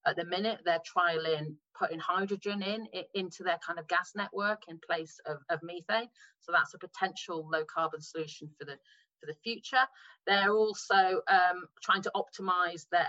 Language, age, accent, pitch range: English, 40-59, British, 165-200 Hz